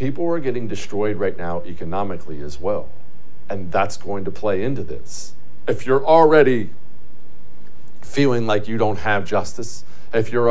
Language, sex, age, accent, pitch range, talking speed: English, male, 50-69, American, 95-125 Hz, 155 wpm